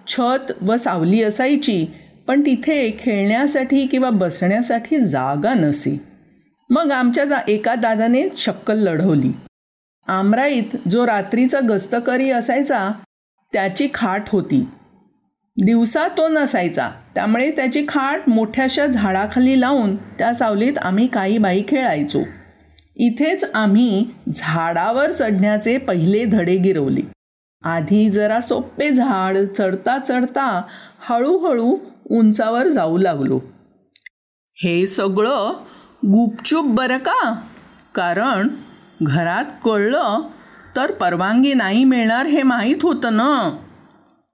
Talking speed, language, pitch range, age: 100 wpm, Marathi, 195-260 Hz, 50-69